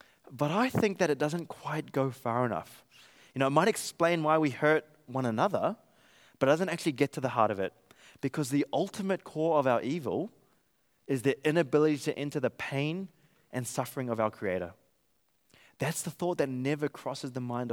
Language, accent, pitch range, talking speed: English, Australian, 125-160 Hz, 195 wpm